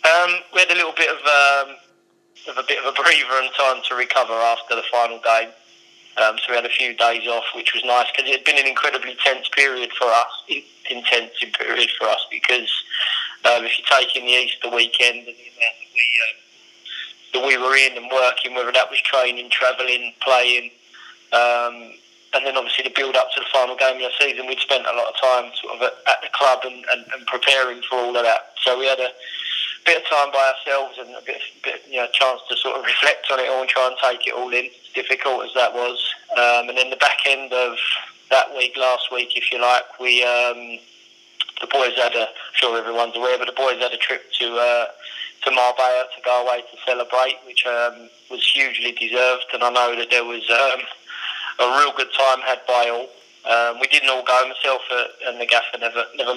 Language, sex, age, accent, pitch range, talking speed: English, male, 20-39, British, 120-130 Hz, 220 wpm